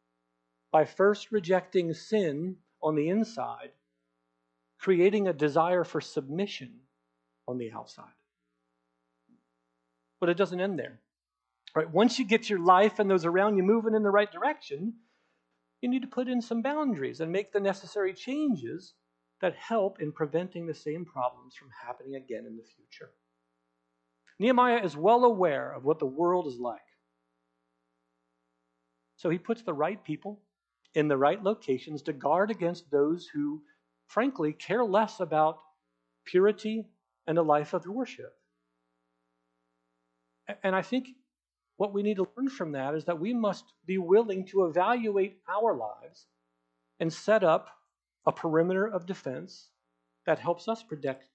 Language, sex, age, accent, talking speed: English, male, 50-69, American, 145 wpm